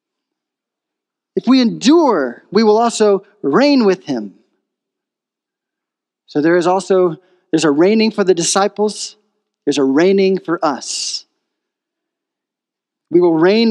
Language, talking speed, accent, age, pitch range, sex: English, 120 wpm, American, 40-59, 190-305 Hz, male